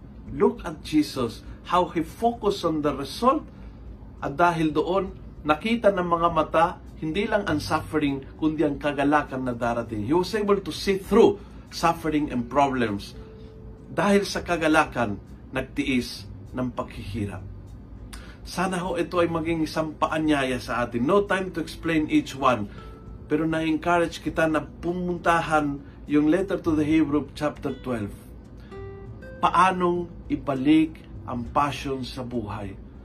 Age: 50-69